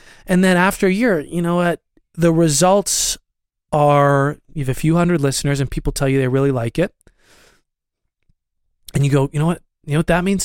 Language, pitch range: English, 140-170 Hz